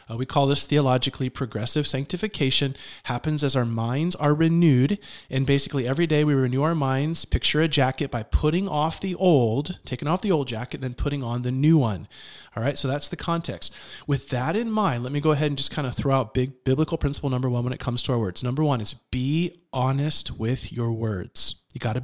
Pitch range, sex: 125-160 Hz, male